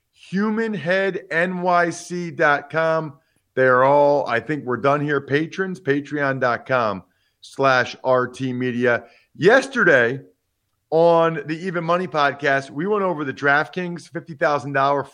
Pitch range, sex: 135-175 Hz, male